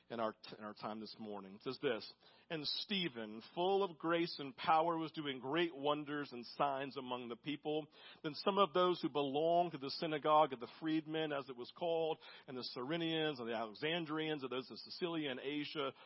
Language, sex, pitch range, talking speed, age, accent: English, male, 145-180 Hz, 205 wpm, 50-69, American